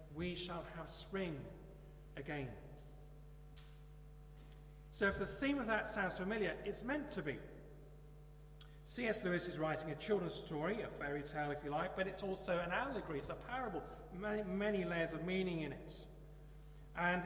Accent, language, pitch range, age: British, English, 150-195 Hz, 40-59